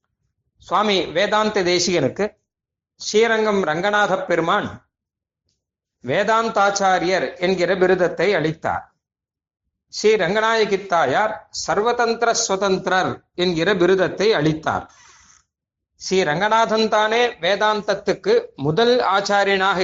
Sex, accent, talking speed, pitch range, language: male, native, 65 wpm, 170-225 Hz, Tamil